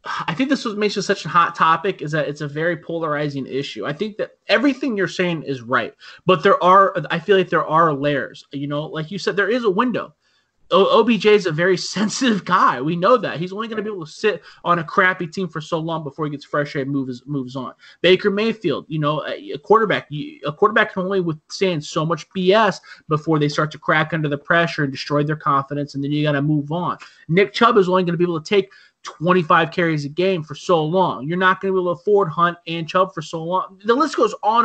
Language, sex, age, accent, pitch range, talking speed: English, male, 20-39, American, 150-195 Hz, 245 wpm